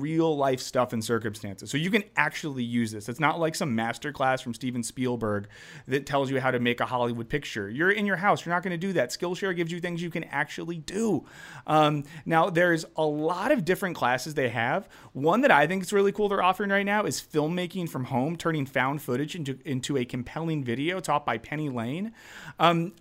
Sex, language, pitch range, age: male, English, 125-175 Hz, 30-49